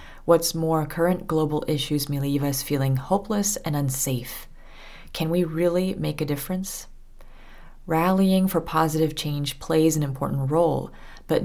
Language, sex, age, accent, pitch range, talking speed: English, female, 30-49, American, 140-165 Hz, 140 wpm